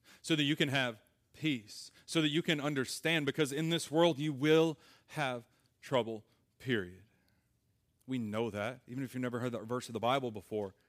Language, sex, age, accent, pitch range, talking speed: English, male, 30-49, American, 115-145 Hz, 185 wpm